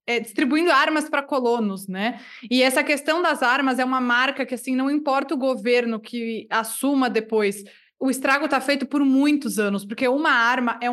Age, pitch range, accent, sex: 20-39, 235-280 Hz, Brazilian, female